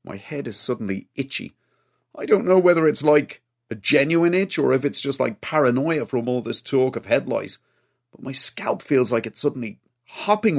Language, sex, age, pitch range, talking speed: English, male, 40-59, 120-165 Hz, 195 wpm